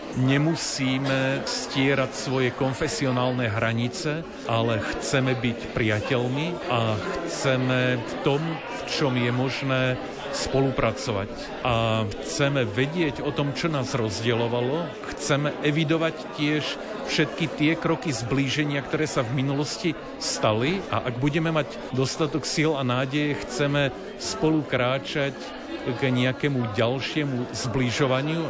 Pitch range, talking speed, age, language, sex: 125-145 Hz, 110 wpm, 50-69, Slovak, male